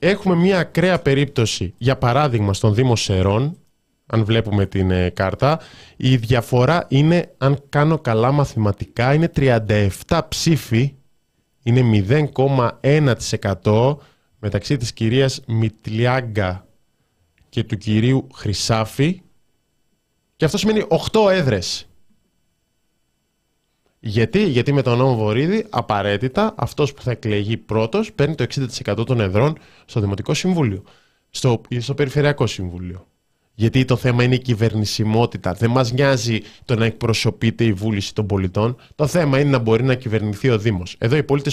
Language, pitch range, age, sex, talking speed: Greek, 110-140 Hz, 20-39, male, 130 wpm